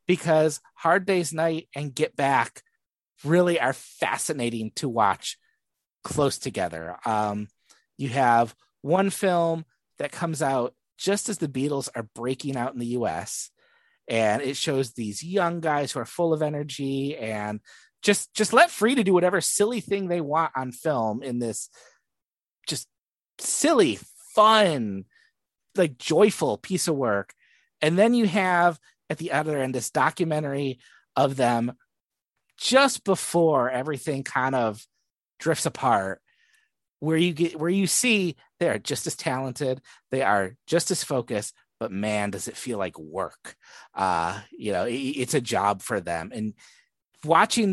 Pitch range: 120-175 Hz